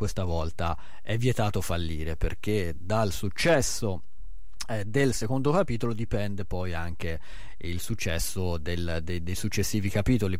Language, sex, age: Italian, male, 30-49